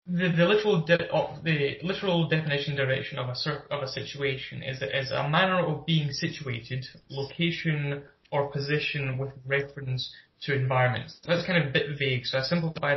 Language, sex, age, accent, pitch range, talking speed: English, male, 20-39, British, 135-155 Hz, 180 wpm